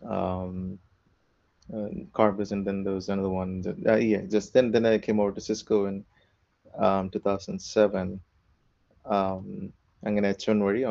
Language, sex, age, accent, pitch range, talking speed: Malayalam, male, 30-49, native, 95-110 Hz, 150 wpm